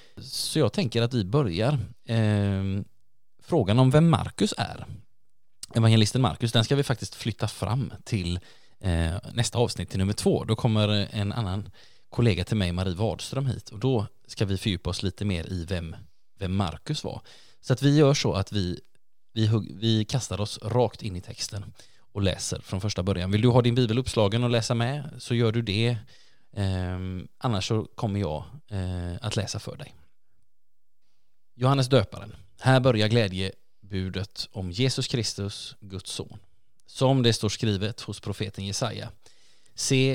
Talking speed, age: 165 wpm, 20-39